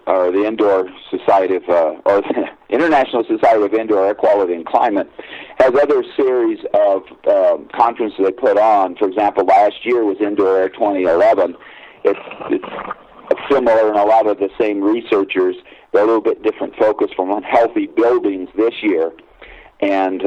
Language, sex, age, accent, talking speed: English, male, 50-69, American, 170 wpm